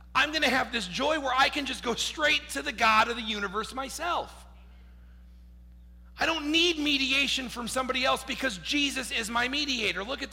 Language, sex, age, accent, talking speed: English, male, 40-59, American, 185 wpm